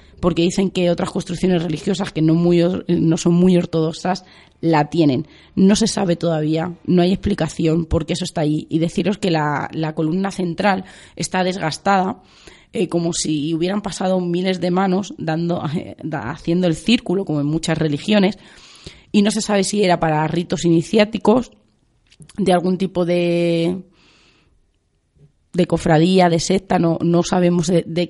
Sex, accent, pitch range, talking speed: female, Spanish, 160-185 Hz, 165 wpm